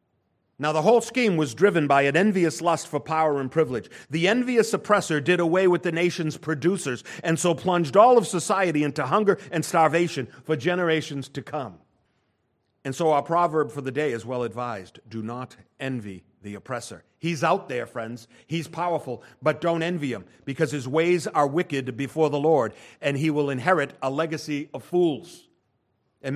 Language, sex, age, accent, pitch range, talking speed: English, male, 50-69, American, 120-170 Hz, 180 wpm